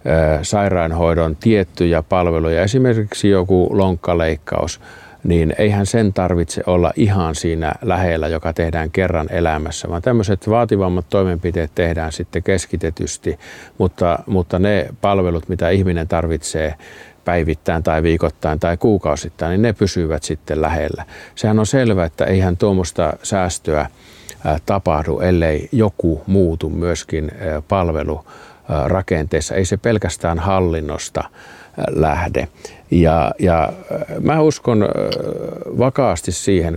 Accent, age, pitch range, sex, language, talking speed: native, 50-69, 85-95 Hz, male, Finnish, 110 wpm